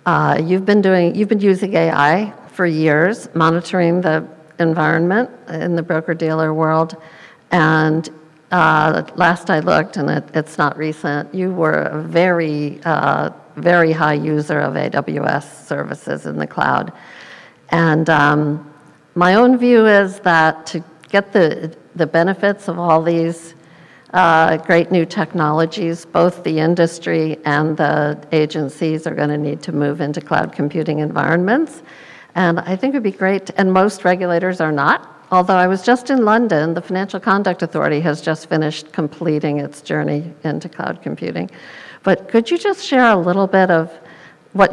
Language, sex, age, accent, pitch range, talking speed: English, female, 50-69, American, 155-185 Hz, 155 wpm